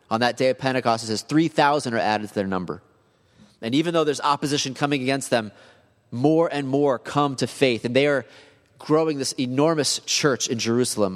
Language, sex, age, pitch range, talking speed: English, male, 30-49, 105-130 Hz, 195 wpm